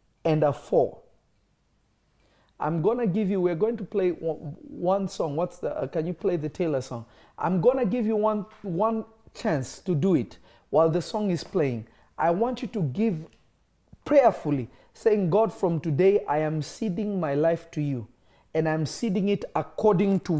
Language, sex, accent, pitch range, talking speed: English, male, South African, 155-215 Hz, 180 wpm